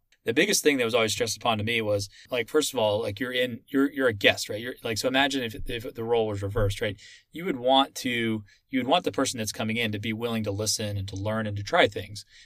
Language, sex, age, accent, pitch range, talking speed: English, male, 20-39, American, 105-130 Hz, 275 wpm